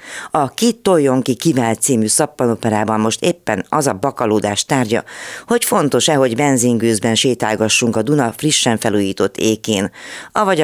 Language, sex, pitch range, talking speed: Hungarian, female, 105-140 Hz, 125 wpm